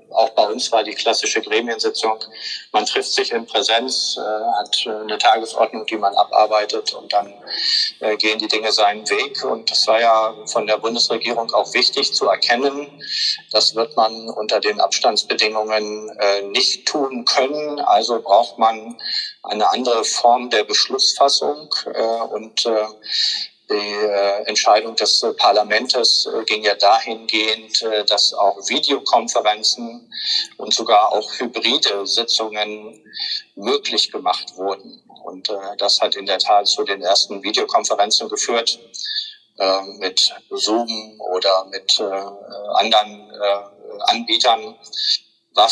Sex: male